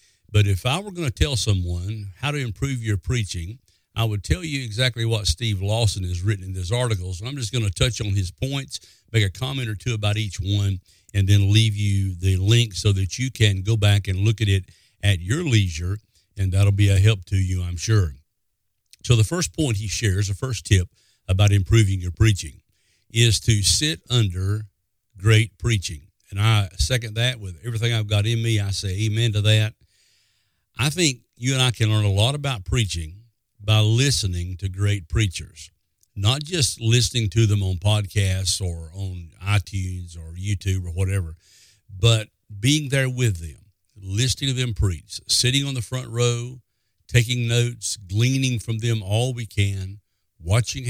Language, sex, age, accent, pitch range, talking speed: English, male, 50-69, American, 95-115 Hz, 185 wpm